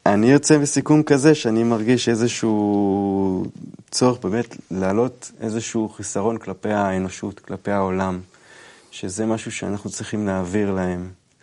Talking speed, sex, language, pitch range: 115 wpm, male, Hebrew, 100-130 Hz